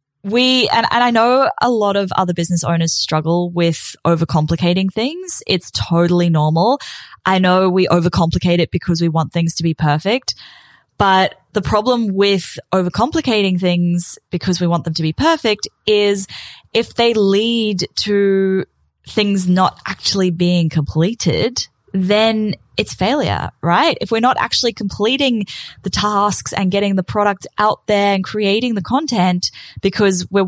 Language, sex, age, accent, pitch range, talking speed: English, female, 10-29, Australian, 175-220 Hz, 150 wpm